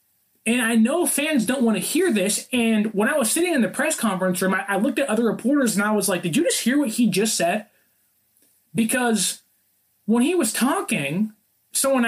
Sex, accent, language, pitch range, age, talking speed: male, American, English, 190-245 Hz, 20-39, 215 wpm